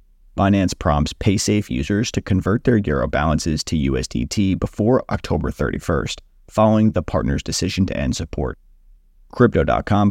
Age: 30-49